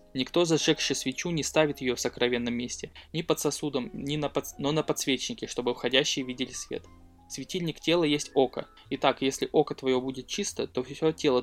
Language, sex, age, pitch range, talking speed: Russian, male, 20-39, 125-150 Hz, 170 wpm